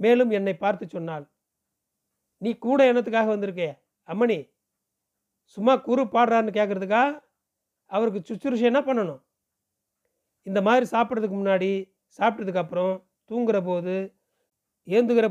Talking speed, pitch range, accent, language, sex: 100 wpm, 195-240 Hz, native, Tamil, male